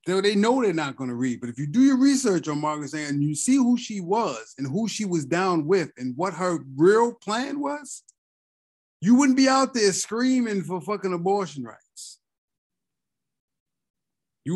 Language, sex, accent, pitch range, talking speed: English, male, American, 145-200 Hz, 185 wpm